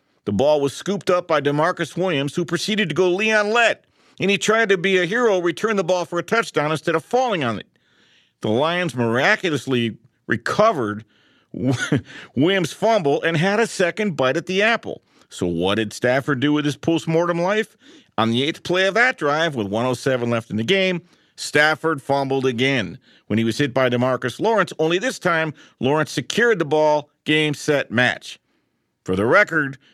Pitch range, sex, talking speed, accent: 125-190 Hz, male, 180 wpm, American